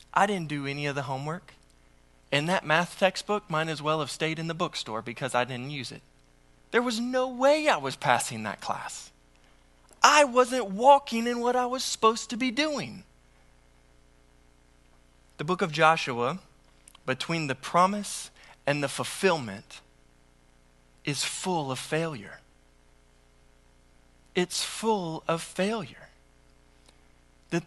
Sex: male